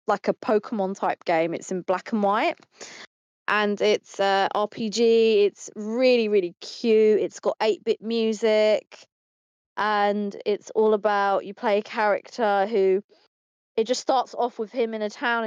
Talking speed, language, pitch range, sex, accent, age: 155 wpm, English, 195-230 Hz, female, British, 20-39